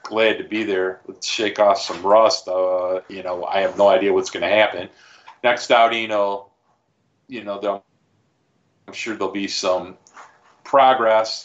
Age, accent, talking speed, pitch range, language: 40-59, American, 170 wpm, 100-120 Hz, English